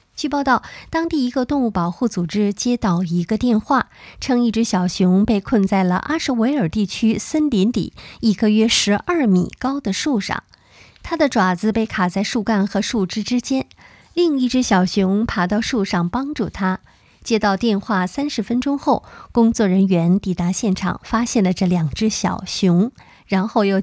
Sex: female